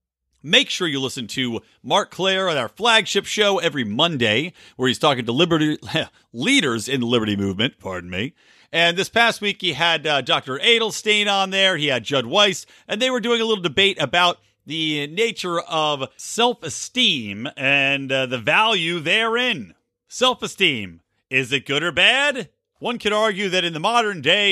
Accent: American